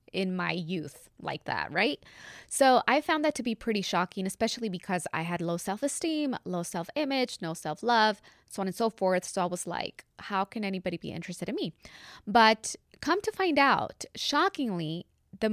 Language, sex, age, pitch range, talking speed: English, female, 20-39, 190-255 Hz, 180 wpm